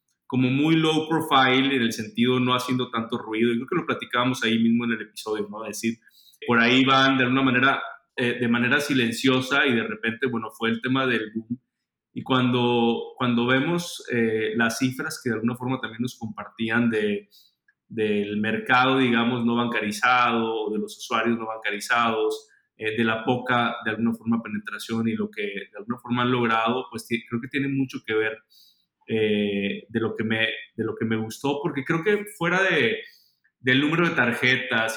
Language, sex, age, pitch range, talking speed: Spanish, male, 20-39, 115-135 Hz, 190 wpm